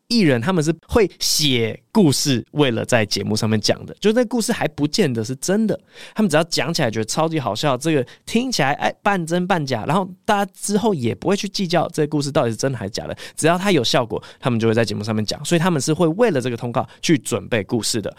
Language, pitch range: Chinese, 115-165 Hz